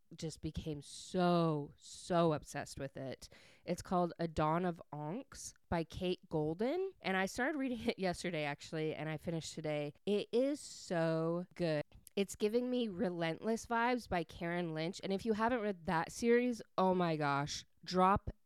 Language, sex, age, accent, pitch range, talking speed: English, female, 20-39, American, 160-205 Hz, 165 wpm